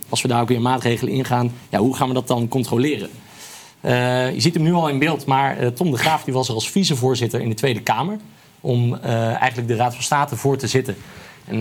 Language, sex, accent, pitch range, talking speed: Dutch, male, Dutch, 120-140 Hz, 240 wpm